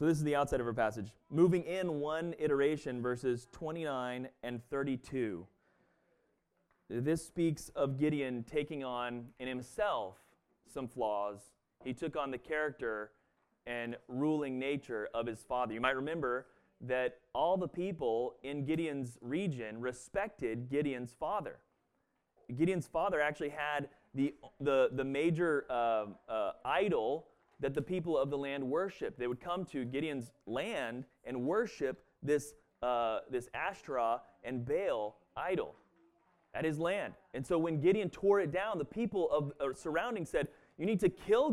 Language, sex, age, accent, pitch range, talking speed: English, male, 30-49, American, 130-175 Hz, 145 wpm